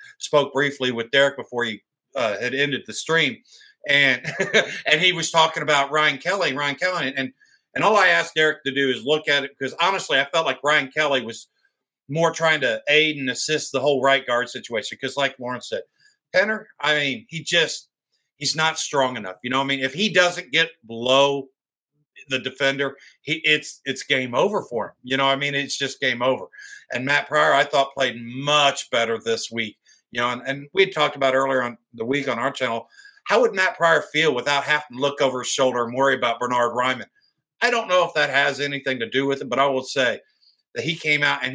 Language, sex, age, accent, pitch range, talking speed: English, male, 50-69, American, 135-165 Hz, 225 wpm